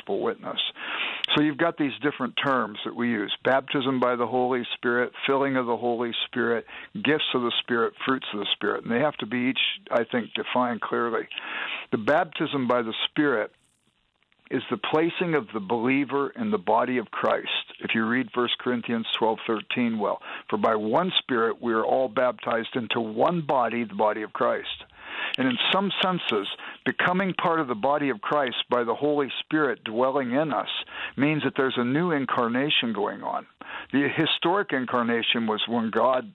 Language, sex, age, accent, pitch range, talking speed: English, male, 60-79, American, 120-150 Hz, 180 wpm